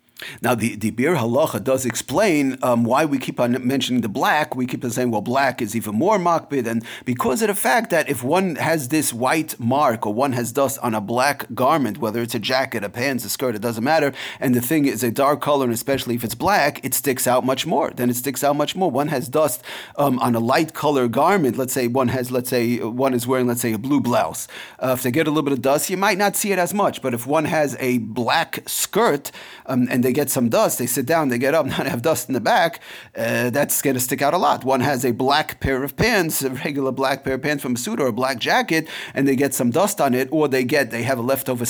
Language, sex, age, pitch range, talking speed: English, male, 40-59, 125-150 Hz, 260 wpm